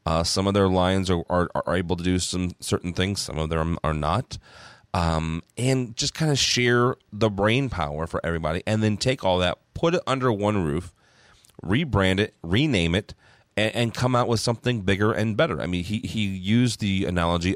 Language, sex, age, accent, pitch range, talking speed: English, male, 30-49, American, 85-110 Hz, 205 wpm